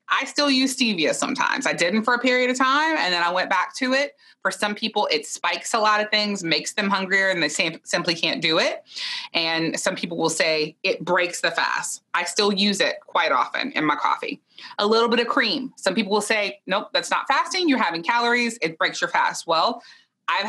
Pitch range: 170-260 Hz